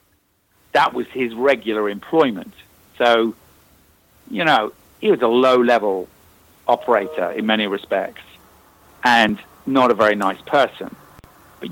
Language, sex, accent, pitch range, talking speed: English, male, British, 90-120 Hz, 125 wpm